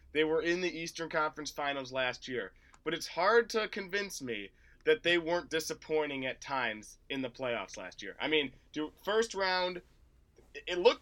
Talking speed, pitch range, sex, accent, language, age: 175 wpm, 130-200 Hz, male, American, English, 20-39